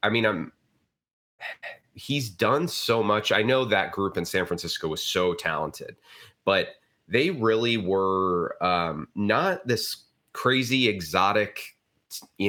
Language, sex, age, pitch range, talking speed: English, male, 30-49, 90-110 Hz, 130 wpm